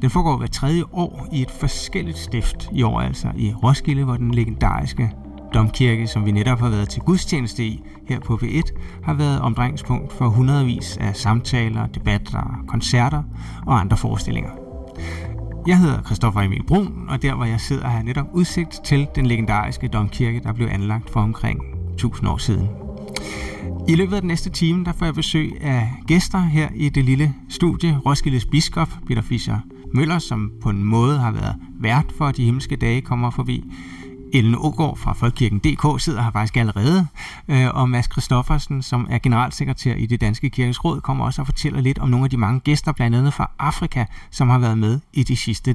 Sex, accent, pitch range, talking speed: male, native, 110-145 Hz, 190 wpm